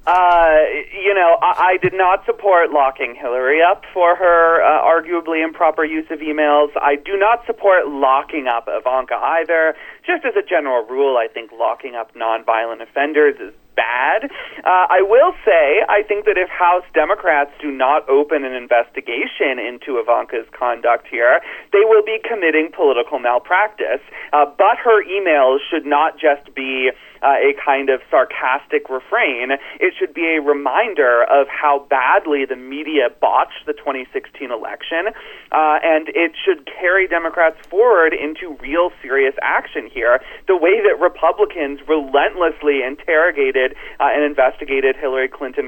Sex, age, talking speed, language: male, 30-49, 150 wpm, English